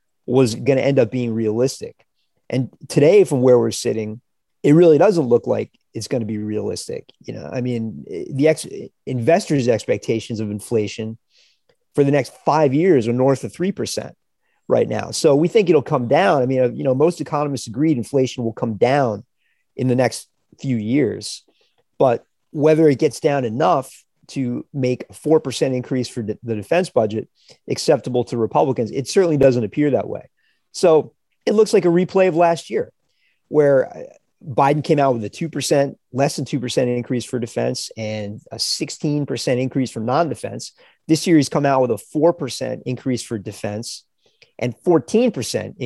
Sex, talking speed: male, 170 wpm